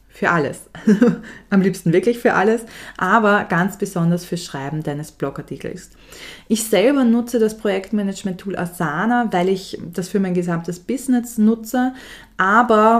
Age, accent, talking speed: 20-39, German, 135 wpm